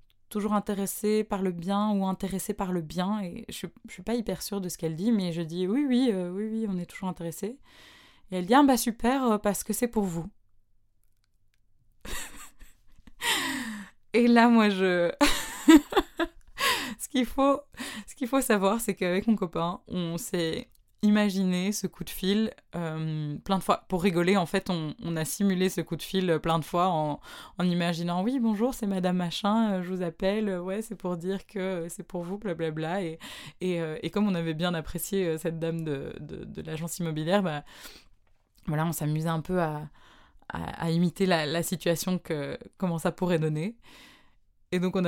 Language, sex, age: French, female, 20-39